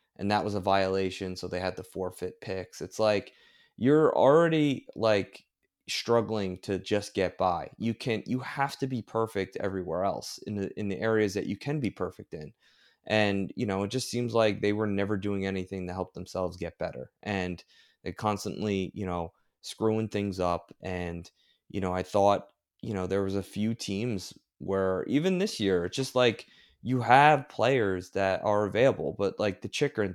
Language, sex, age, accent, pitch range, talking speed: English, male, 20-39, American, 95-115 Hz, 190 wpm